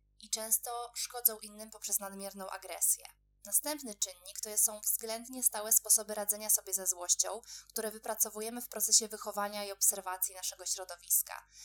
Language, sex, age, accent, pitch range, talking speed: Polish, female, 20-39, native, 190-220 Hz, 140 wpm